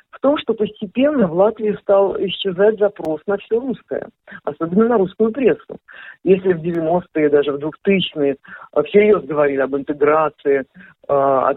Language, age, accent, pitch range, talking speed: Russian, 50-69, native, 155-215 Hz, 140 wpm